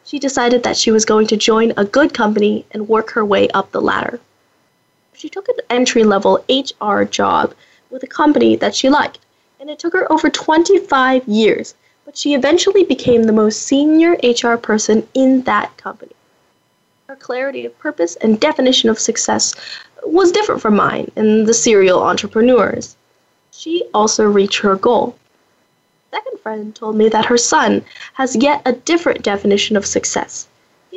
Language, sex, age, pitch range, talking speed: English, female, 10-29, 215-290 Hz, 165 wpm